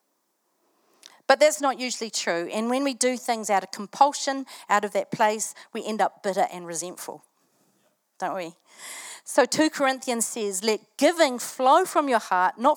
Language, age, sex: English, 40-59, female